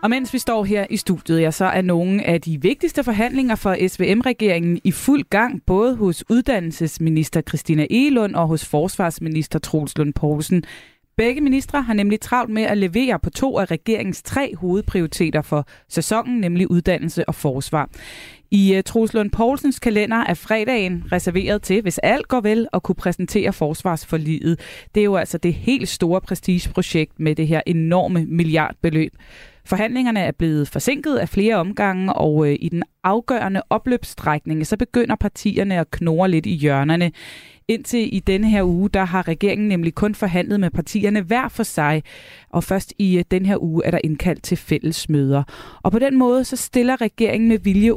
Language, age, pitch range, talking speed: Danish, 20-39, 160-215 Hz, 175 wpm